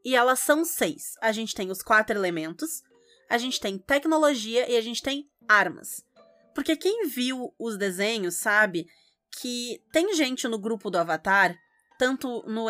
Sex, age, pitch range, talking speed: female, 20-39, 205-275 Hz, 160 wpm